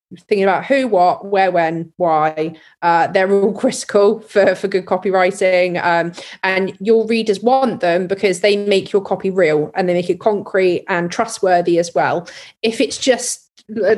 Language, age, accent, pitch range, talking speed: English, 20-39, British, 190-225 Hz, 170 wpm